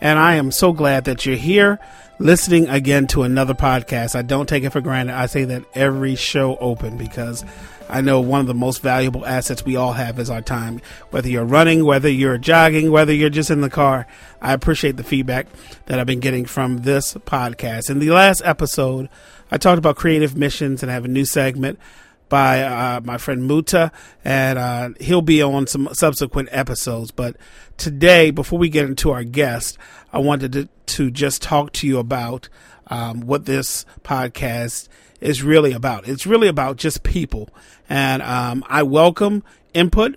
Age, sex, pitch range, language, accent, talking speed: 40-59, male, 130-155 Hz, English, American, 185 wpm